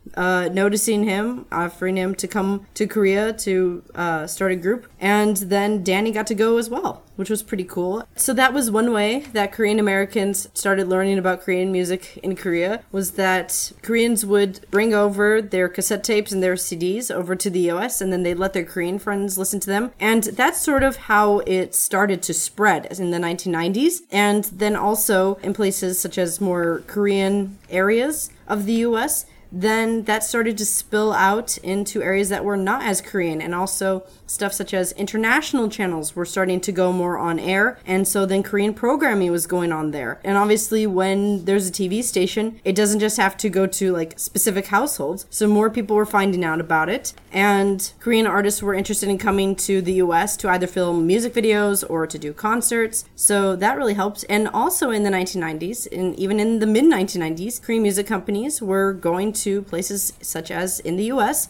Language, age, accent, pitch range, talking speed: English, 20-39, American, 185-215 Hz, 195 wpm